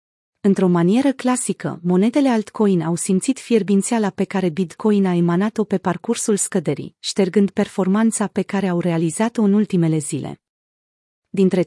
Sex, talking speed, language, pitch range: female, 135 wpm, Romanian, 180-225 Hz